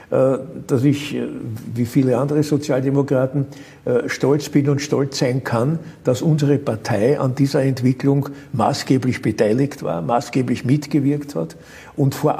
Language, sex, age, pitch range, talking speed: German, male, 60-79, 130-155 Hz, 125 wpm